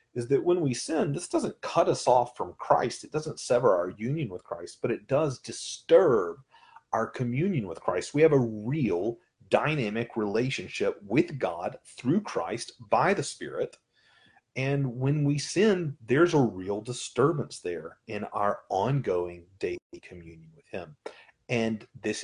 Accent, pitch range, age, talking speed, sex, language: American, 110-155 Hz, 30-49, 155 wpm, male, English